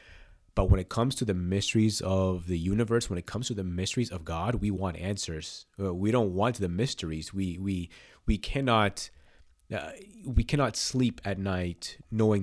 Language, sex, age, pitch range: English, male, 30-49, 90-110 Hz